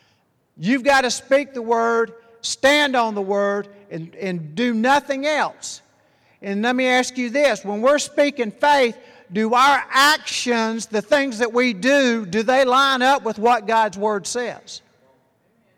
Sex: male